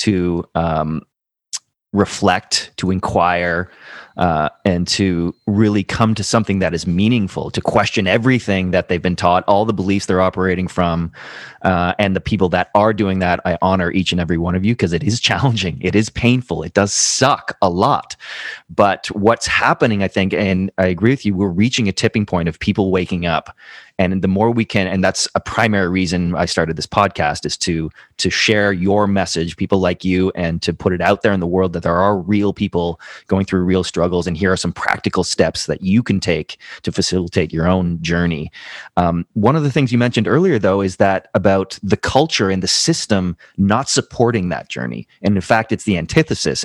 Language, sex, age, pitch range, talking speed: English, male, 30-49, 90-105 Hz, 205 wpm